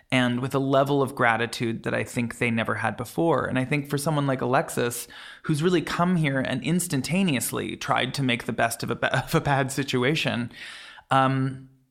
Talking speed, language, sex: 185 wpm, English, male